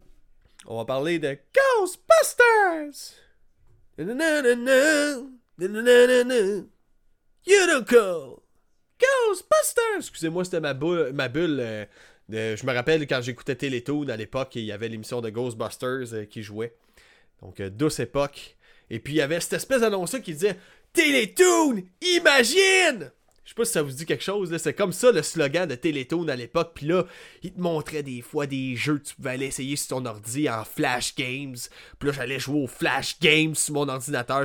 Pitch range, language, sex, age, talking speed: 135-200 Hz, French, male, 30-49, 165 wpm